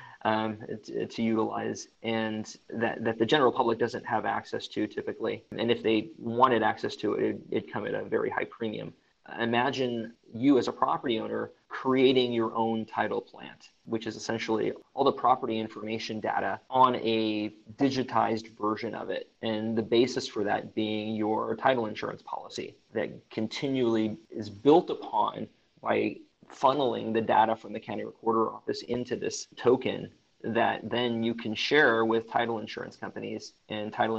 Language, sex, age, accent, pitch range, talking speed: English, male, 20-39, American, 110-115 Hz, 165 wpm